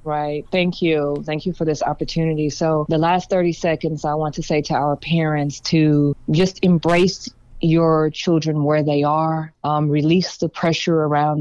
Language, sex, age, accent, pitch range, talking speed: English, female, 20-39, American, 155-175 Hz, 175 wpm